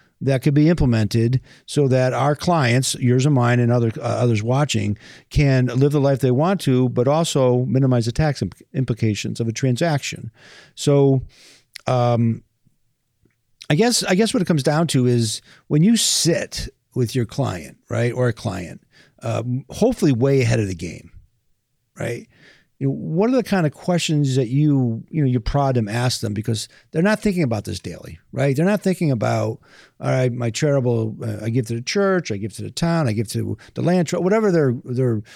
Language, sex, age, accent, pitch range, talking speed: English, male, 50-69, American, 115-155 Hz, 195 wpm